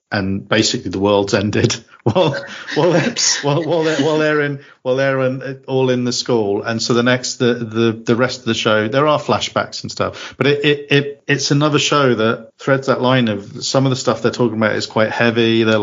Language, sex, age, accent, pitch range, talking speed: English, male, 40-59, British, 105-130 Hz, 225 wpm